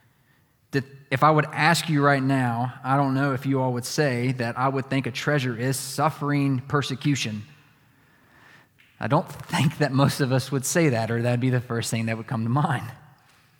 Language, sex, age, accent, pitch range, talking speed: English, male, 20-39, American, 115-145 Hz, 200 wpm